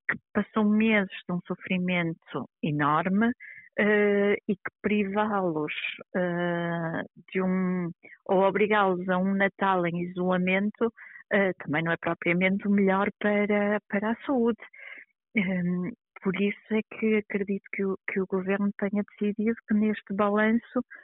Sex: female